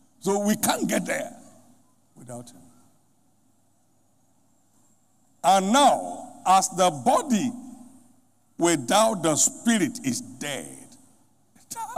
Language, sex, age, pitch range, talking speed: English, male, 60-79, 165-260 Hz, 90 wpm